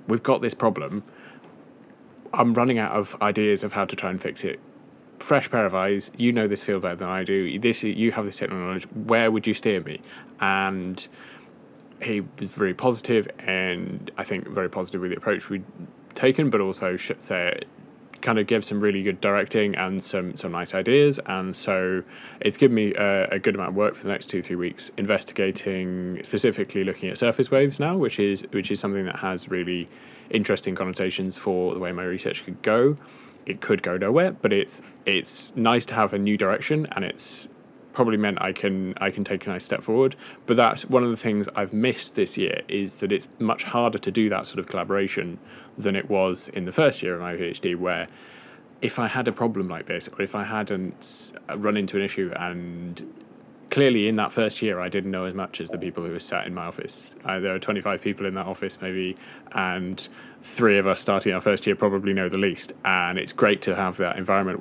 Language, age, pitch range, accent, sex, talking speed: English, 20-39, 95-110 Hz, British, male, 215 wpm